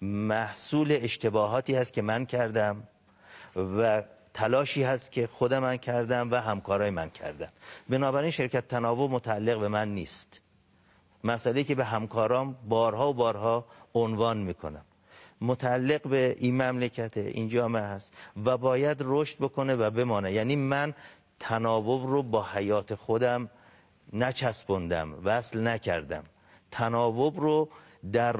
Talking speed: 125 wpm